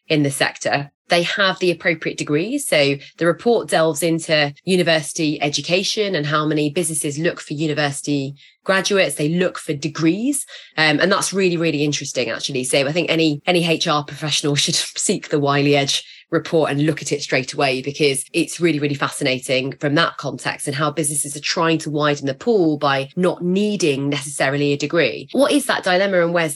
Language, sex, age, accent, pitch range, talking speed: English, female, 20-39, British, 145-180 Hz, 185 wpm